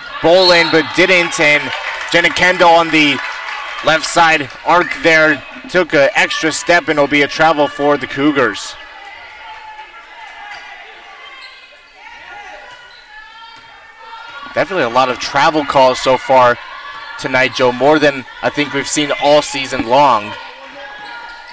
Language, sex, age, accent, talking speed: English, male, 20-39, American, 120 wpm